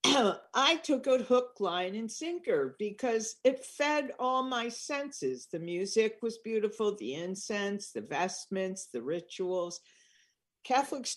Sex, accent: female, American